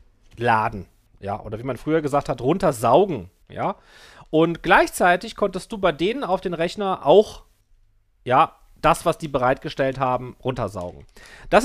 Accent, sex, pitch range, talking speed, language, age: German, male, 135-200 Hz, 145 wpm, German, 40-59